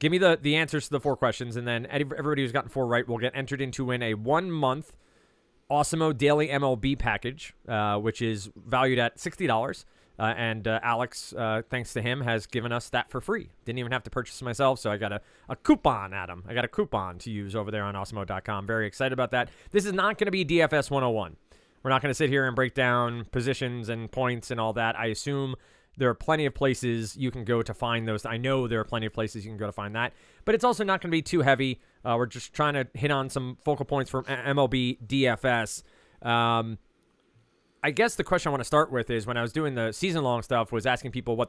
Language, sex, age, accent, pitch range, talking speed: English, male, 30-49, American, 115-140 Hz, 245 wpm